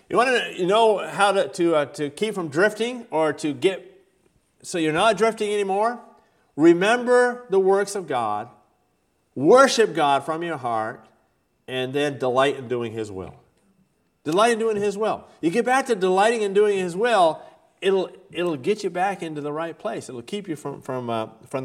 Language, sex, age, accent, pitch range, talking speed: English, male, 40-59, American, 110-175 Hz, 185 wpm